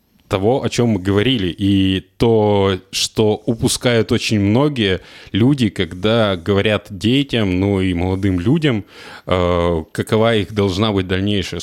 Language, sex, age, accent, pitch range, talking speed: Russian, male, 20-39, native, 95-115 Hz, 125 wpm